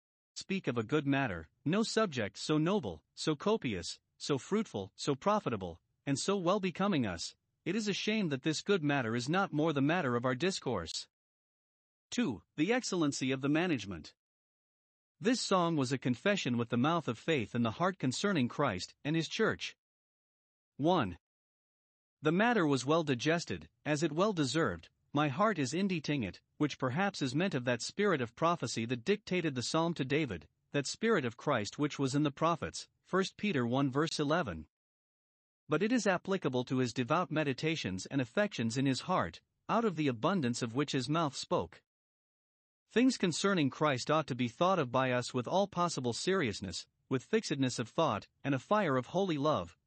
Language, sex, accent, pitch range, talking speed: English, male, American, 130-185 Hz, 180 wpm